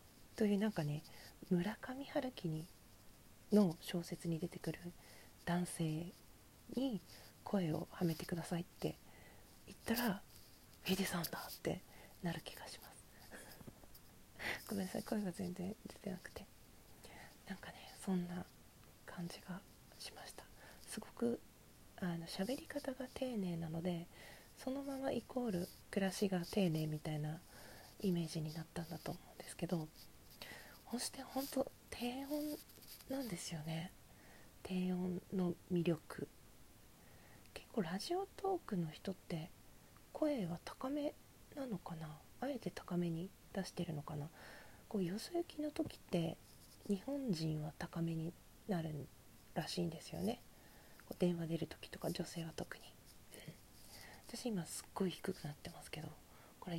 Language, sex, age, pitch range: Japanese, female, 40-59, 165-215 Hz